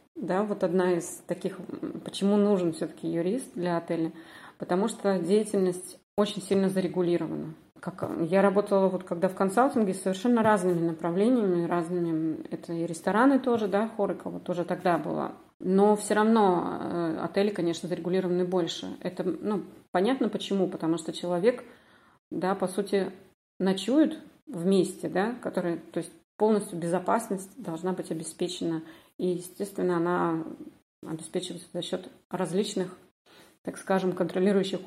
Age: 30-49